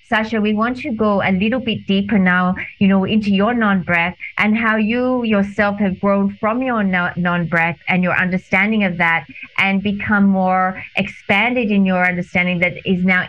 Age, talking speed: 30-49, 175 wpm